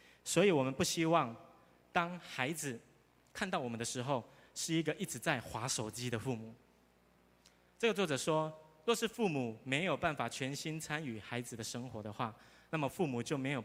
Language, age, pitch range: Chinese, 20-39, 110-165 Hz